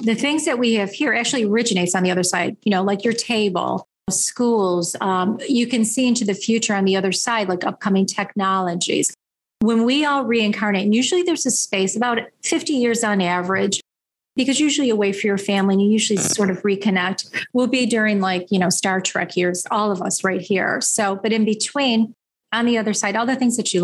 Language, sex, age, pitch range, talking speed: English, female, 30-49, 185-225 Hz, 215 wpm